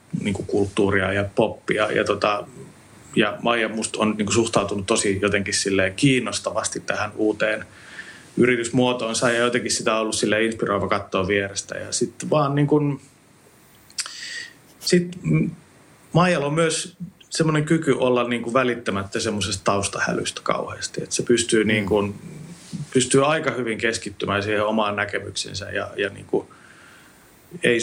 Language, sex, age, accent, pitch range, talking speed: Finnish, male, 30-49, native, 105-125 Hz, 120 wpm